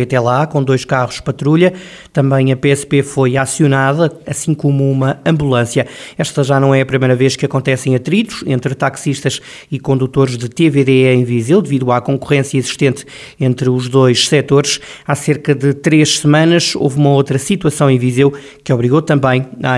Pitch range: 130-150 Hz